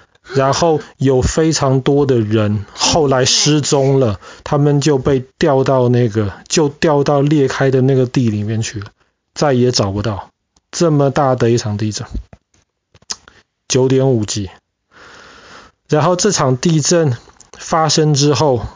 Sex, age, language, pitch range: male, 20-39, Chinese, 115-145 Hz